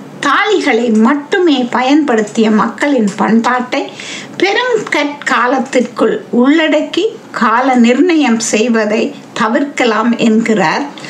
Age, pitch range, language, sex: 60-79, 235-320 Hz, Tamil, female